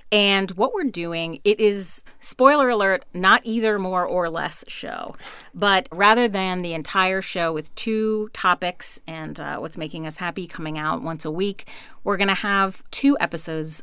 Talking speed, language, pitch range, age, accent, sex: 175 wpm, English, 170-245 Hz, 40-59, American, female